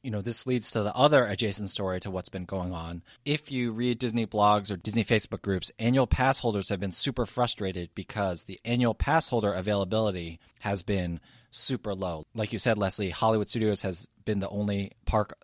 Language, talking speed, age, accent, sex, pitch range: English, 200 wpm, 30-49, American, male, 90-115 Hz